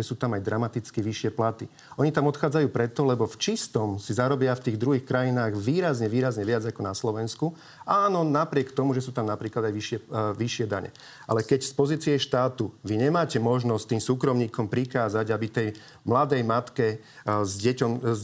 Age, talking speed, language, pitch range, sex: 40-59, 190 wpm, Slovak, 115-140 Hz, male